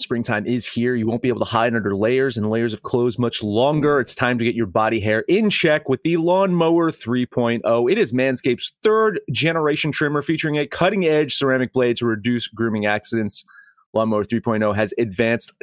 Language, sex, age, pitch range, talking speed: English, male, 30-49, 120-165 Hz, 190 wpm